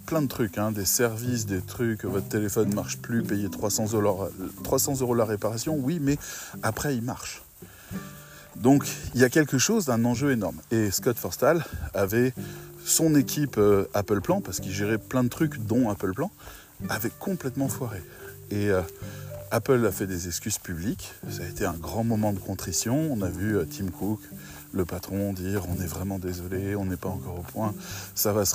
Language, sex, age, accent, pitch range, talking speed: French, male, 20-39, French, 100-130 Hz, 190 wpm